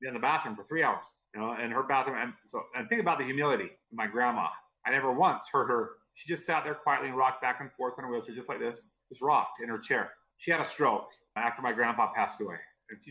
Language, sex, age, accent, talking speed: English, male, 40-59, American, 265 wpm